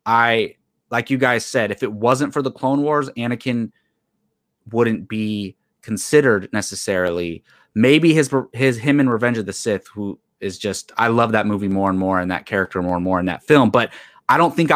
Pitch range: 105-135 Hz